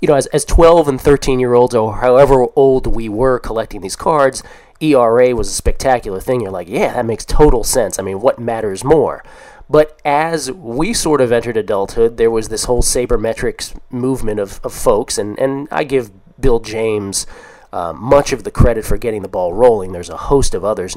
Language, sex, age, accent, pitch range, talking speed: English, male, 30-49, American, 115-145 Hz, 195 wpm